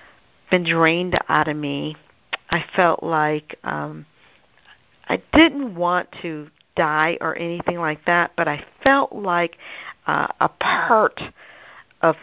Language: English